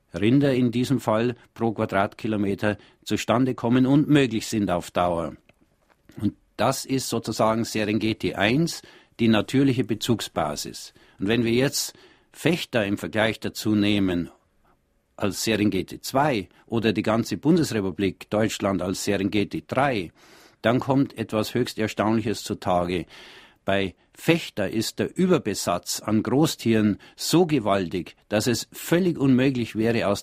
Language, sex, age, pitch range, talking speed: German, male, 50-69, 100-125 Hz, 125 wpm